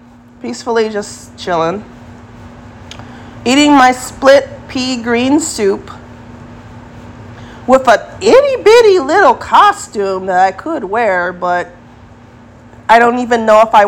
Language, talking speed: English, 110 wpm